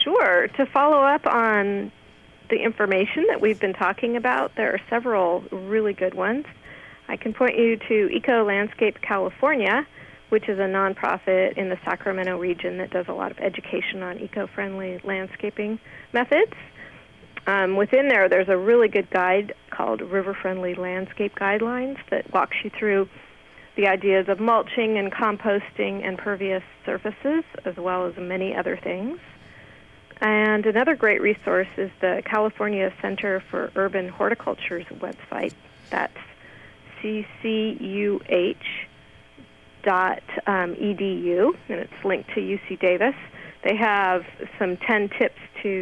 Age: 40-59